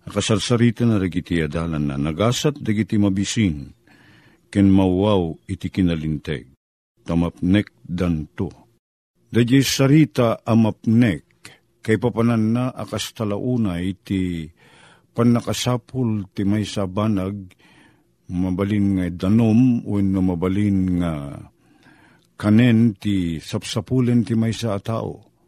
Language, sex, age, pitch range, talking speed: Filipino, male, 50-69, 95-125 Hz, 105 wpm